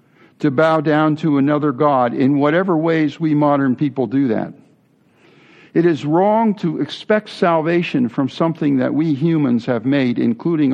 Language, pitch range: English, 135-165 Hz